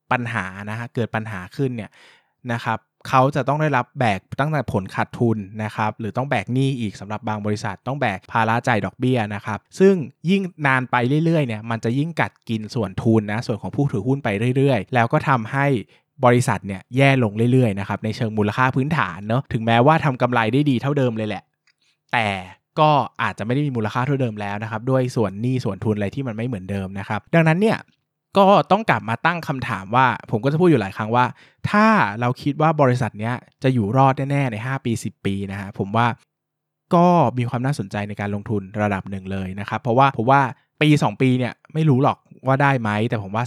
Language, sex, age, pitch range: Thai, male, 20-39, 110-135 Hz